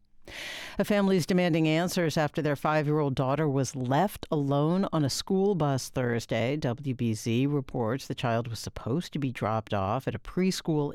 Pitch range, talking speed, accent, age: 120-175 Hz, 165 wpm, American, 60-79